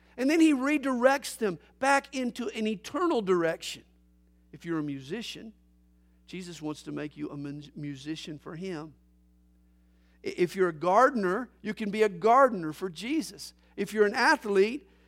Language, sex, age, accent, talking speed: English, male, 50-69, American, 150 wpm